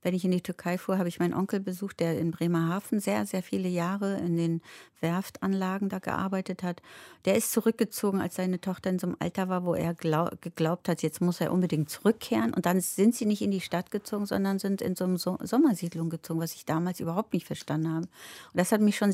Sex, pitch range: female, 175-205 Hz